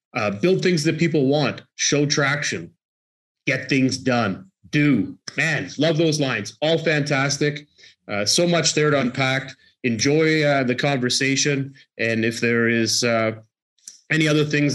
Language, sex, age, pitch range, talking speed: English, male, 30-49, 115-140 Hz, 145 wpm